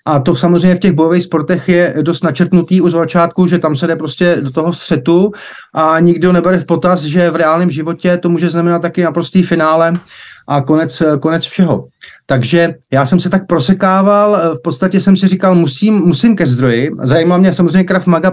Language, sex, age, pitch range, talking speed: Slovak, male, 30-49, 155-185 Hz, 195 wpm